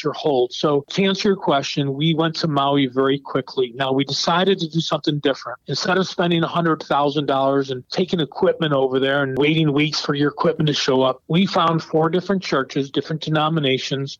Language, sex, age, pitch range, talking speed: English, male, 40-59, 135-165 Hz, 185 wpm